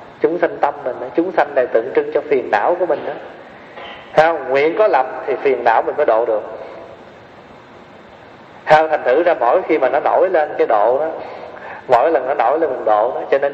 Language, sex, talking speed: Vietnamese, male, 220 wpm